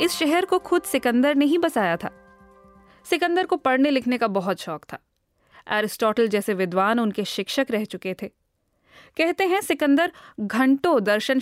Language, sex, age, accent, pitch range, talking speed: Hindi, female, 20-39, native, 215-290 Hz, 160 wpm